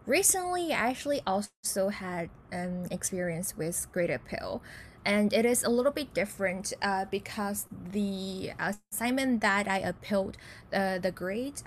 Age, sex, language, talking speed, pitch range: 10-29, female, English, 145 wpm, 190-225 Hz